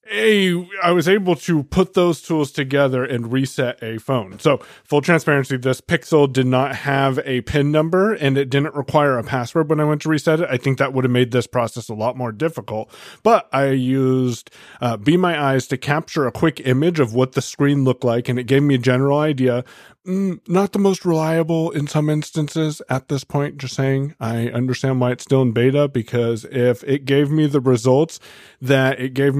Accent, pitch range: American, 125-155 Hz